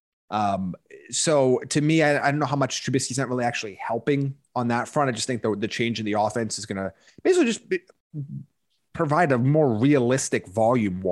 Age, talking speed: 30-49, 205 wpm